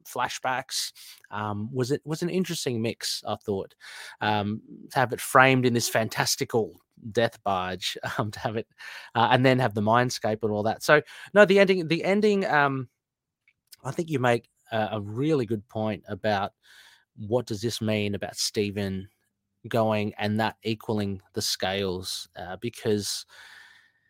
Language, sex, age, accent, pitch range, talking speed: English, male, 30-49, Australian, 105-130 Hz, 160 wpm